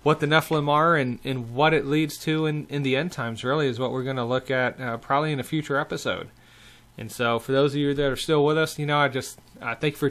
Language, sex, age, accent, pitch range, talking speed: English, male, 30-49, American, 125-145 Hz, 280 wpm